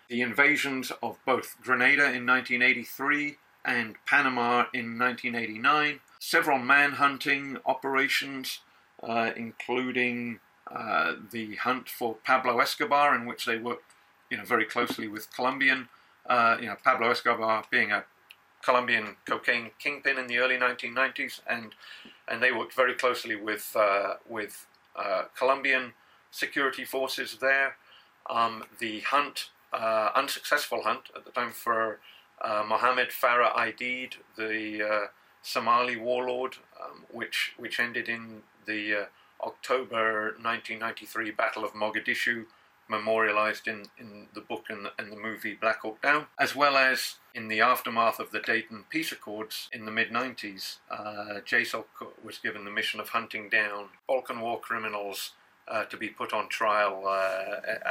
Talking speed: 140 wpm